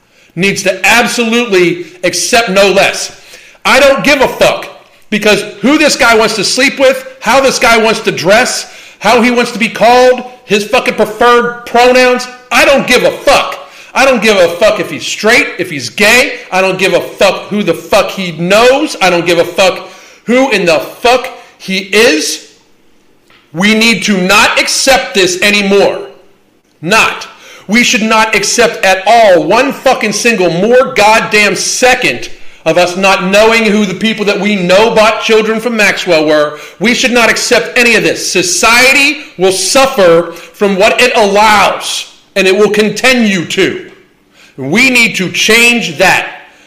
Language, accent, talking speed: English, American, 170 wpm